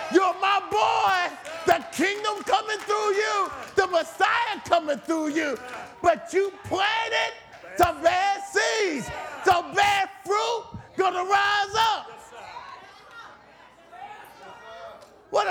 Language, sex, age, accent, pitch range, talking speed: English, male, 40-59, American, 280-380 Hz, 100 wpm